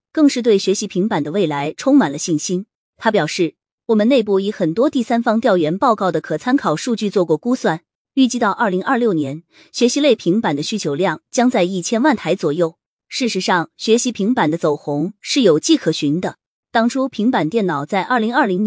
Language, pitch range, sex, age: Chinese, 170-240 Hz, female, 20-39